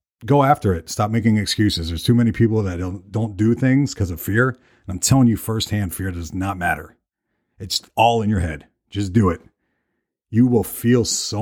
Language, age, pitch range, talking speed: English, 40-59, 90-115 Hz, 205 wpm